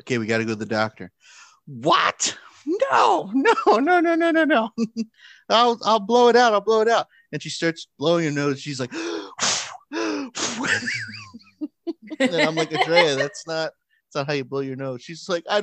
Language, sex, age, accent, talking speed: English, male, 30-49, American, 190 wpm